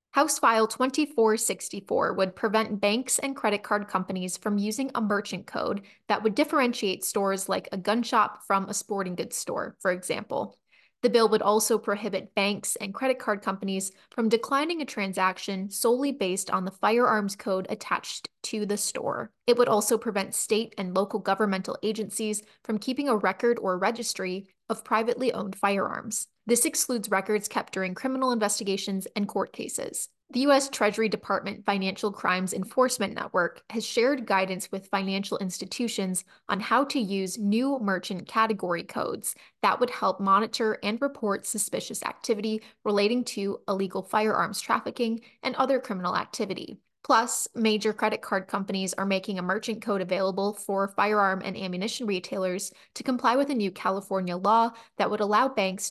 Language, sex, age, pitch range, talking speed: English, female, 20-39, 195-235 Hz, 160 wpm